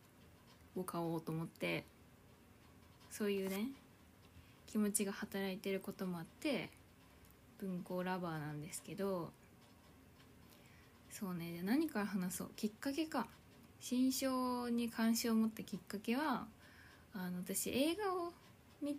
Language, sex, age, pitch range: Japanese, female, 20-39, 190-255 Hz